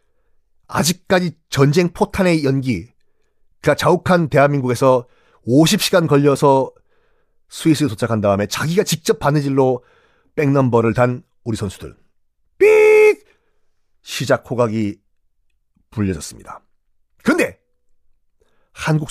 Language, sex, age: Korean, male, 40-59